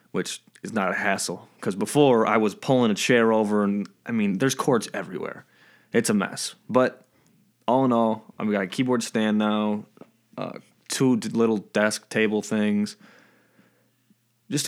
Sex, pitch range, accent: male, 105-125 Hz, American